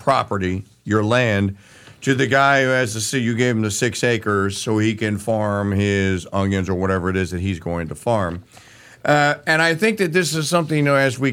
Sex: male